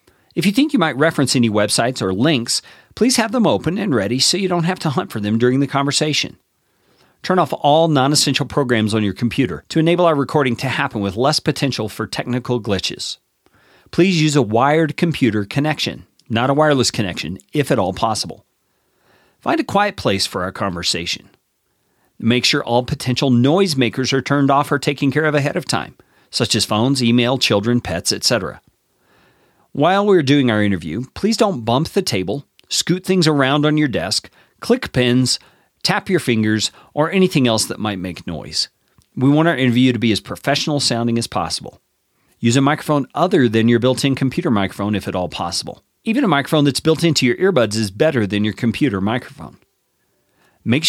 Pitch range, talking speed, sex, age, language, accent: 115-155 Hz, 185 wpm, male, 40-59, English, American